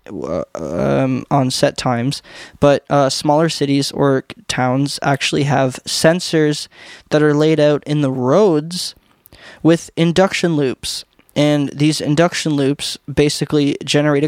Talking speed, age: 120 wpm, 20-39